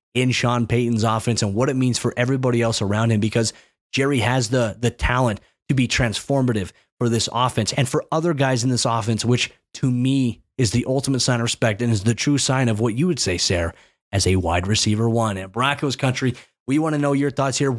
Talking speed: 225 wpm